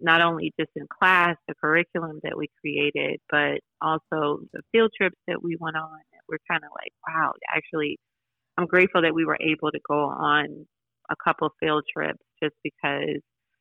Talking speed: 175 wpm